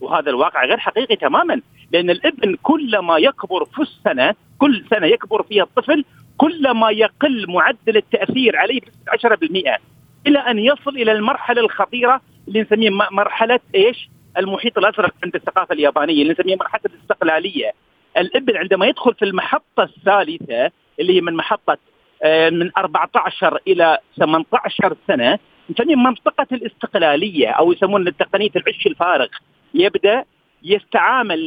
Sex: male